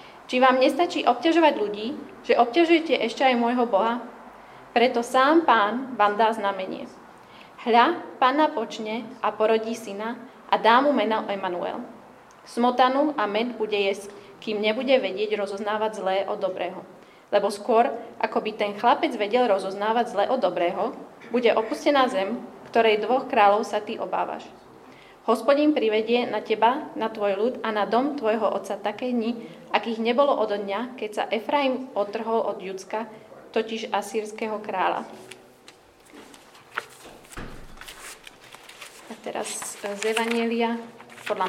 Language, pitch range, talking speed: Slovak, 205-250 Hz, 135 wpm